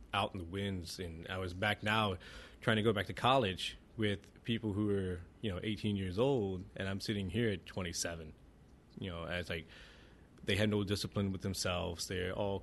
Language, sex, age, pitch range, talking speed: English, male, 20-39, 90-110 Hz, 200 wpm